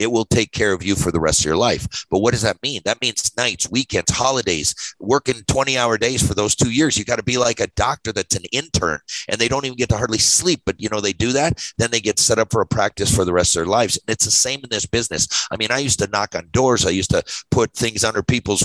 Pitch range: 105-130 Hz